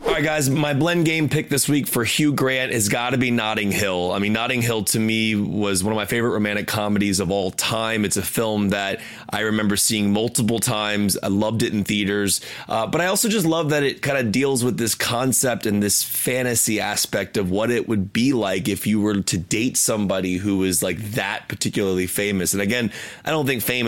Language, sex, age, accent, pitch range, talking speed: English, male, 30-49, American, 100-120 Hz, 225 wpm